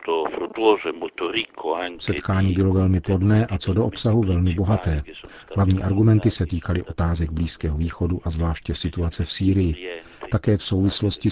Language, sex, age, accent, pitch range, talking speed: Czech, male, 50-69, native, 85-100 Hz, 135 wpm